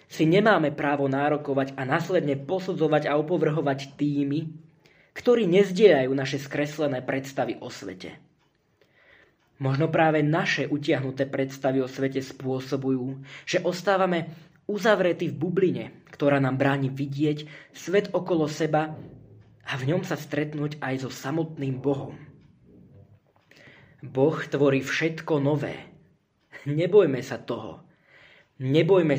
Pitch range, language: 140-170 Hz, Slovak